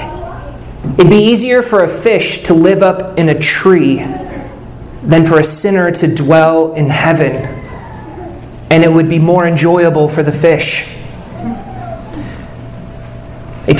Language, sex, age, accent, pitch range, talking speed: English, male, 30-49, American, 160-210 Hz, 130 wpm